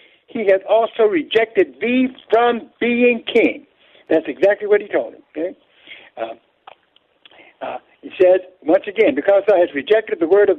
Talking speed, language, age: 160 wpm, English, 60-79